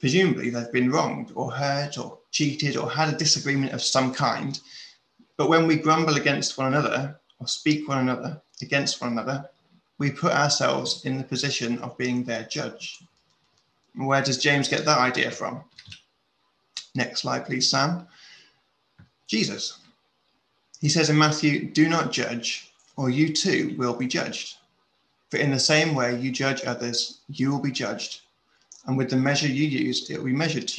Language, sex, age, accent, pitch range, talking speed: English, male, 20-39, British, 125-155 Hz, 170 wpm